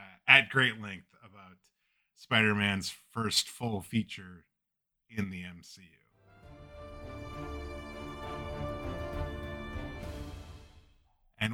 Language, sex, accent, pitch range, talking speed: English, male, American, 105-145 Hz, 60 wpm